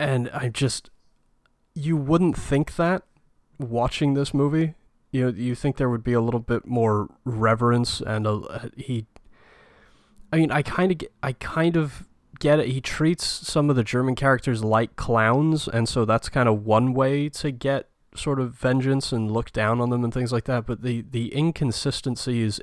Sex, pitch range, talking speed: male, 105-130 Hz, 175 wpm